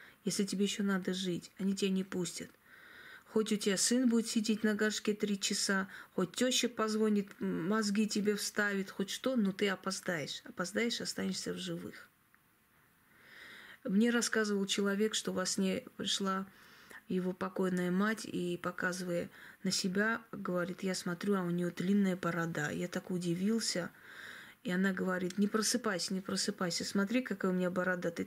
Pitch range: 180-210 Hz